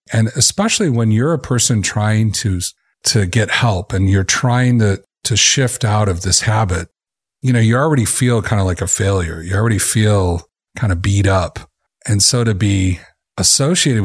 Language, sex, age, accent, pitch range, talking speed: English, male, 40-59, American, 95-125 Hz, 185 wpm